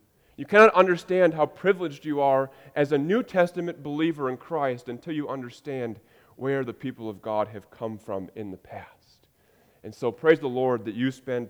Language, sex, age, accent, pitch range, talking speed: English, male, 30-49, American, 110-150 Hz, 190 wpm